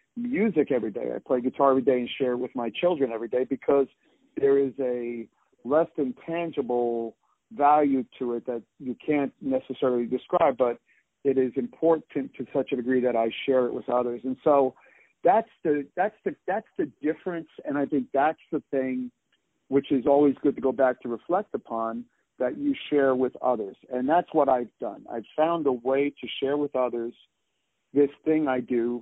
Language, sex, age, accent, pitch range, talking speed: English, male, 50-69, American, 125-145 Hz, 190 wpm